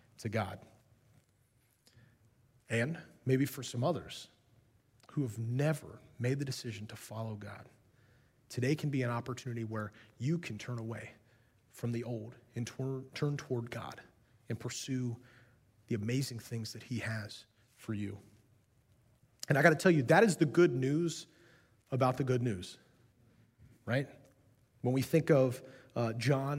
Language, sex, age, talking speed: English, male, 30-49, 145 wpm